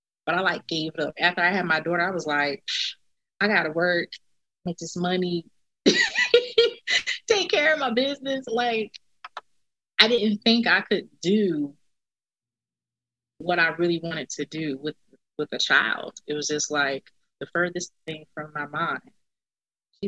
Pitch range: 150-195 Hz